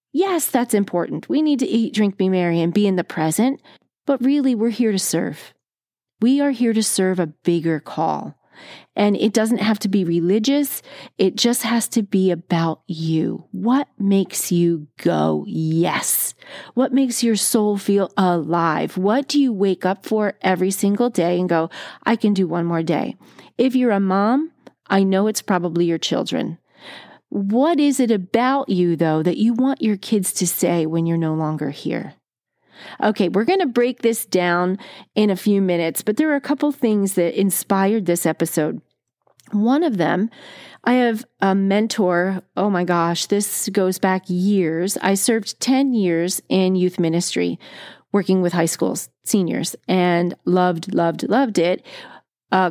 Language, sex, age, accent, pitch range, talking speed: English, female, 40-59, American, 175-230 Hz, 175 wpm